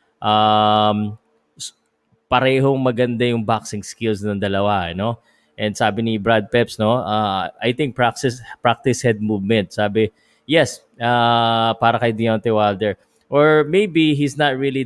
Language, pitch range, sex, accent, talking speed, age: Filipino, 105-125 Hz, male, native, 140 wpm, 20-39